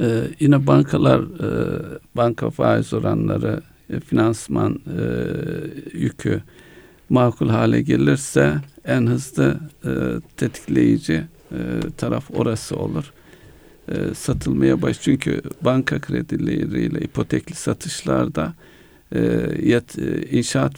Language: Turkish